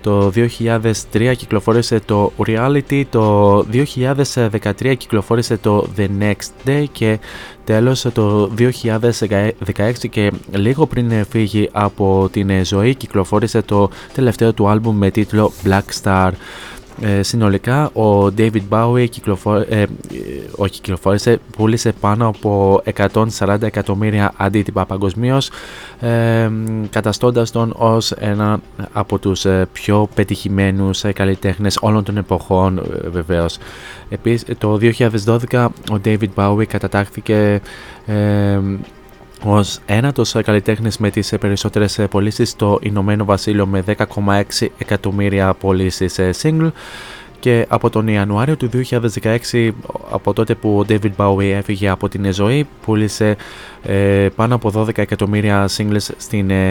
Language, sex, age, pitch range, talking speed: Greek, male, 20-39, 100-115 Hz, 115 wpm